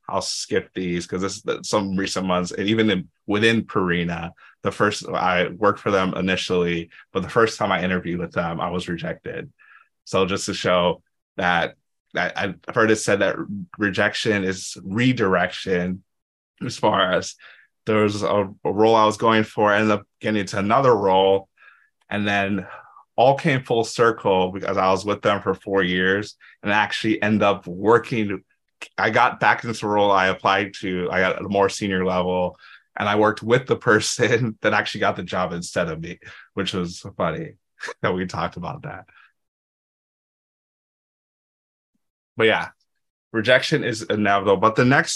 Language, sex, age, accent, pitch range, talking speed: English, male, 20-39, American, 95-110 Hz, 175 wpm